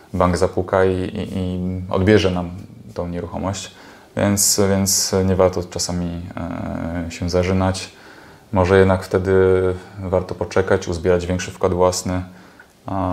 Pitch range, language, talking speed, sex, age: 90-105 Hz, Polish, 125 wpm, male, 20-39